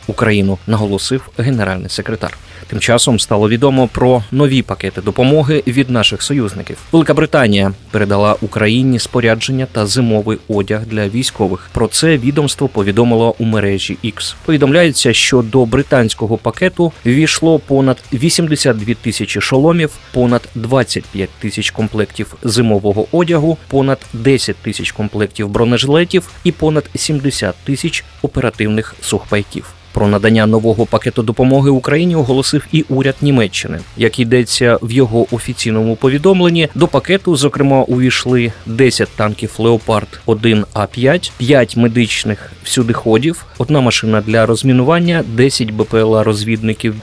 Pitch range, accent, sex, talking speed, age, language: 105-135 Hz, native, male, 115 wpm, 30-49, Ukrainian